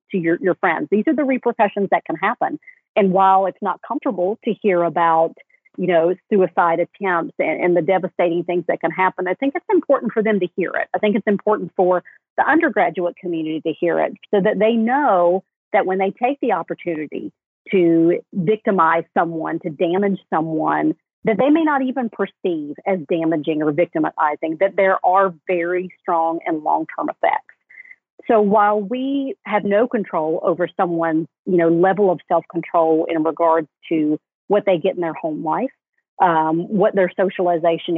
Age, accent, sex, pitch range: 40-59, American, female, 165-210 Hz